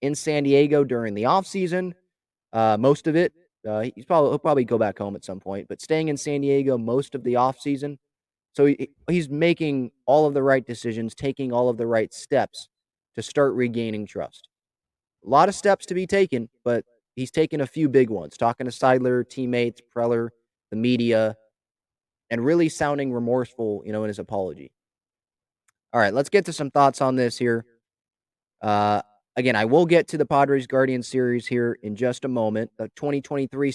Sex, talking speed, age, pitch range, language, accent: male, 190 wpm, 20-39, 115-150 Hz, English, American